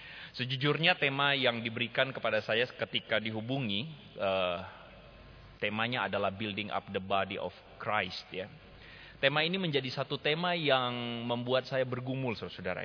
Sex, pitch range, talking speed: male, 105-130 Hz, 130 wpm